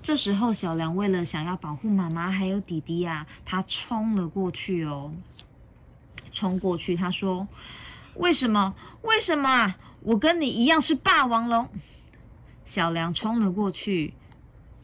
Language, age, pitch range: Chinese, 20-39, 170-230 Hz